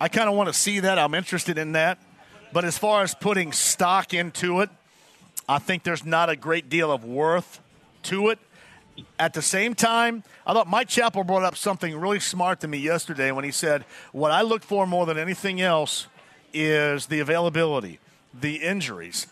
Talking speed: 195 wpm